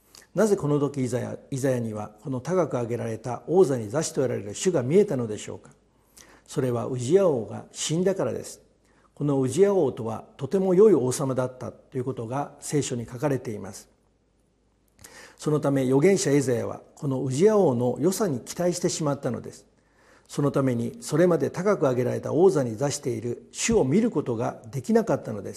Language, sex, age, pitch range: Japanese, male, 50-69, 125-165 Hz